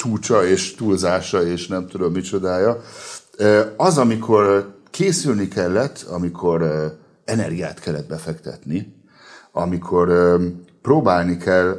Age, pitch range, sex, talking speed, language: 60-79, 80-110 Hz, male, 90 wpm, Hungarian